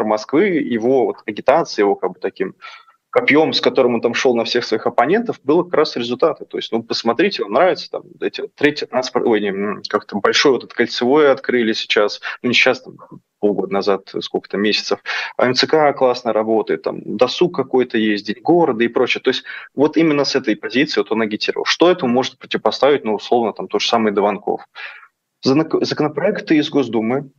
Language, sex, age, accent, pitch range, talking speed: Russian, male, 20-39, native, 110-145 Hz, 180 wpm